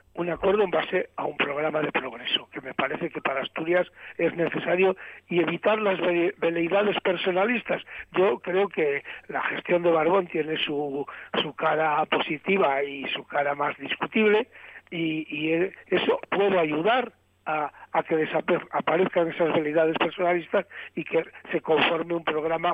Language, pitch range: Spanish, 155-175 Hz